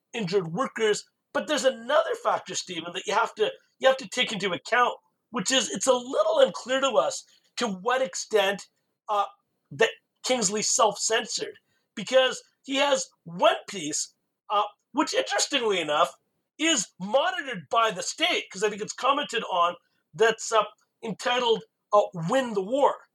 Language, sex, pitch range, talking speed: English, male, 210-280 Hz, 155 wpm